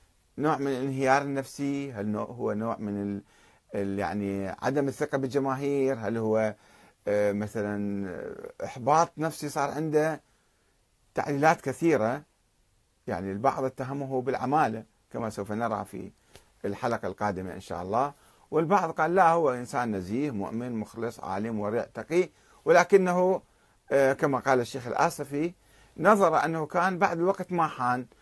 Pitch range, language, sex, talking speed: 105-140 Hz, Arabic, male, 125 wpm